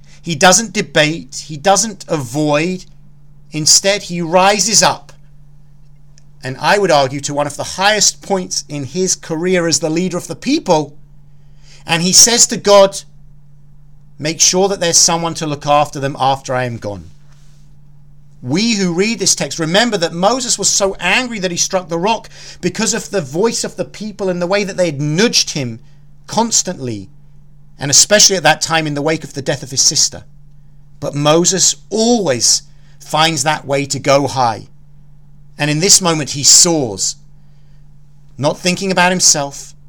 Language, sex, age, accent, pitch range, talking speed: English, male, 40-59, British, 145-175 Hz, 170 wpm